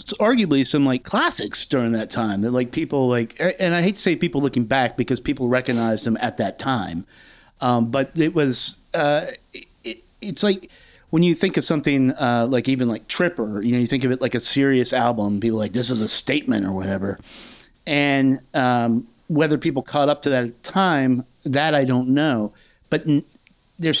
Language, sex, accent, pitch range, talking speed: English, male, American, 125-160 Hz, 195 wpm